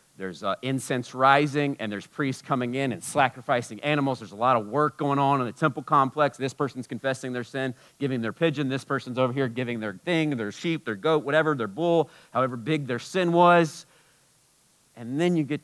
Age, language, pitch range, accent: 40-59, English, 115-150 Hz, American